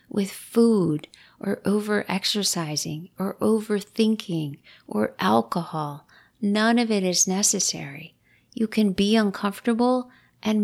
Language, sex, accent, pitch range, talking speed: English, female, American, 180-220 Hz, 100 wpm